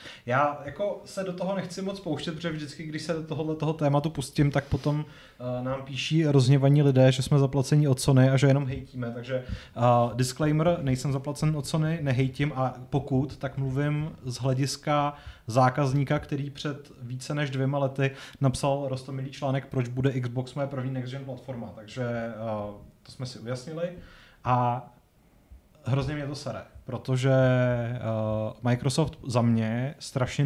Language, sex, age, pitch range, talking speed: Czech, male, 30-49, 125-145 Hz, 155 wpm